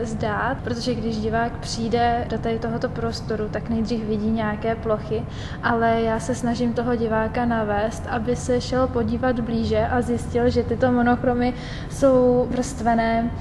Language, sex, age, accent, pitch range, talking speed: Czech, female, 20-39, native, 225-255 Hz, 150 wpm